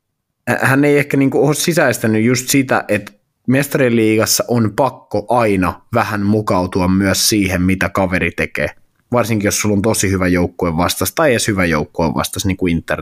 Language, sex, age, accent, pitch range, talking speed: Finnish, male, 20-39, native, 95-120 Hz, 160 wpm